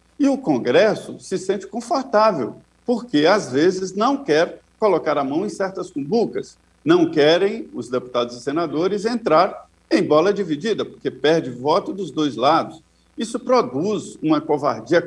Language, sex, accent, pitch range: Portuguese, male, Brazilian, 150-245 Hz